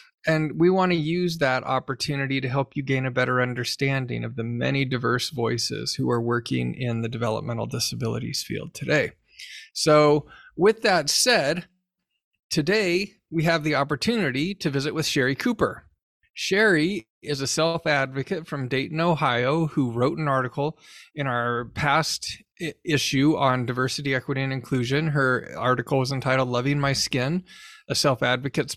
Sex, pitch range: male, 130-155 Hz